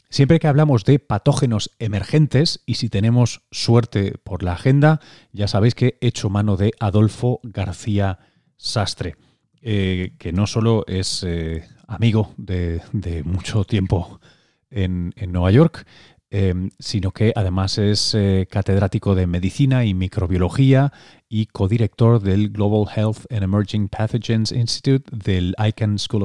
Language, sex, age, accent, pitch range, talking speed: Spanish, male, 30-49, Spanish, 95-115 Hz, 140 wpm